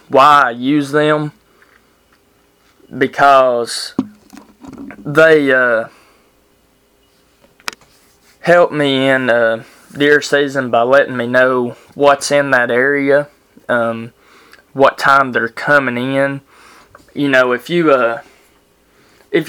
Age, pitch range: 20-39, 120-145 Hz